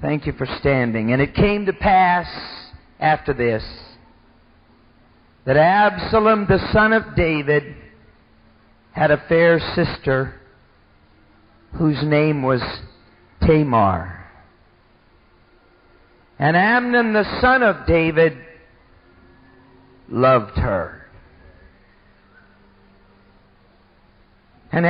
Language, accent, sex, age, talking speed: English, American, male, 50-69, 80 wpm